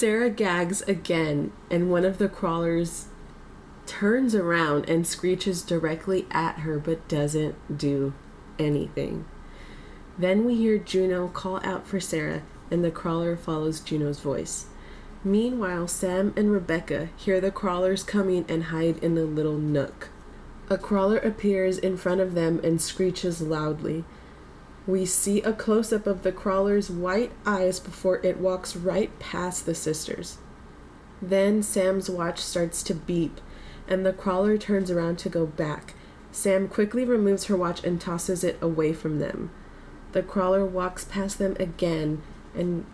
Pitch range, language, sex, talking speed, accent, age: 160-195 Hz, English, female, 145 wpm, American, 30-49